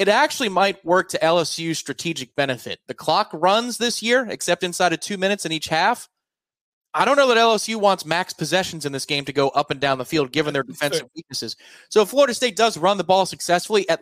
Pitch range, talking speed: 130-170 Hz, 225 wpm